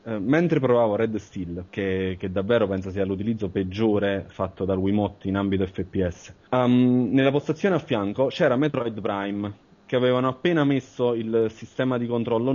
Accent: native